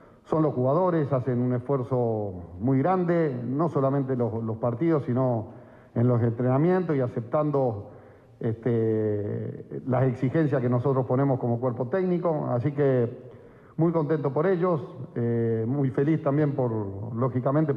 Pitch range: 120-145 Hz